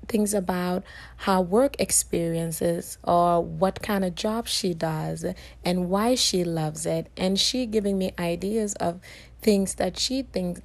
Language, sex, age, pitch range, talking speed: English, female, 30-49, 170-205 Hz, 150 wpm